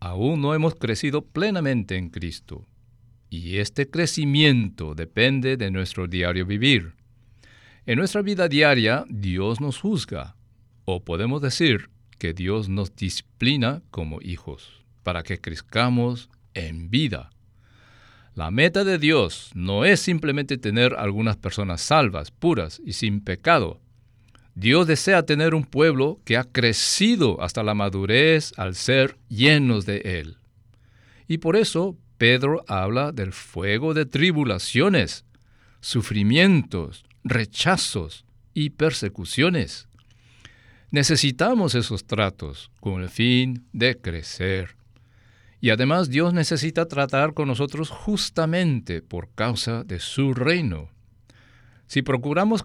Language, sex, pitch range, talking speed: Spanish, male, 100-145 Hz, 115 wpm